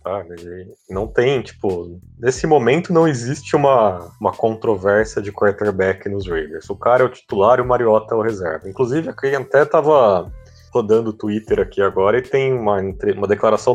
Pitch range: 105-135 Hz